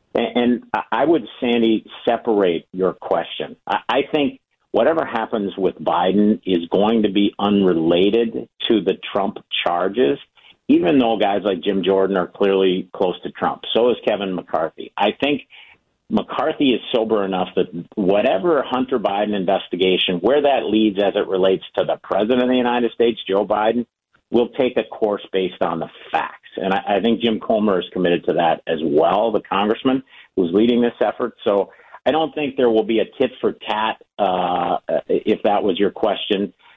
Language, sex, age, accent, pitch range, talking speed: English, male, 50-69, American, 95-125 Hz, 165 wpm